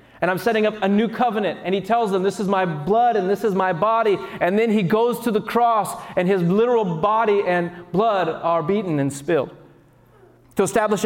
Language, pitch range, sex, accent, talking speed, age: English, 170-230 Hz, male, American, 210 wpm, 30-49